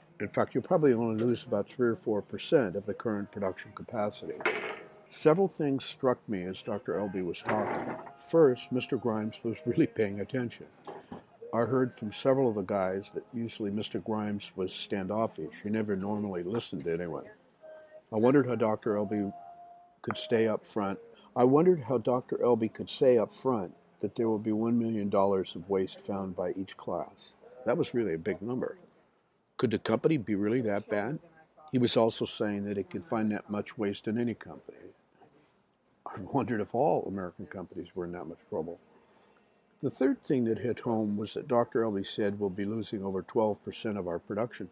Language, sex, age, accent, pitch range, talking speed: English, male, 60-79, American, 100-130 Hz, 185 wpm